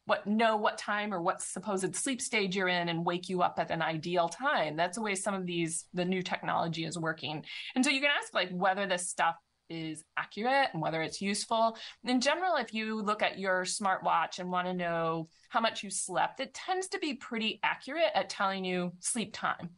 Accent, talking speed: American, 220 wpm